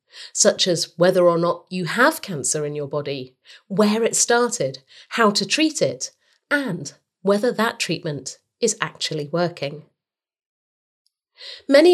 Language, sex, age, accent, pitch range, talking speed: English, female, 40-59, British, 160-245 Hz, 130 wpm